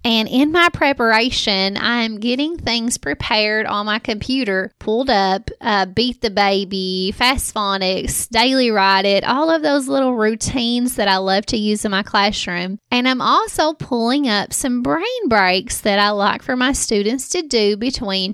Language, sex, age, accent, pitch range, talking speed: English, female, 20-39, American, 200-255 Hz, 170 wpm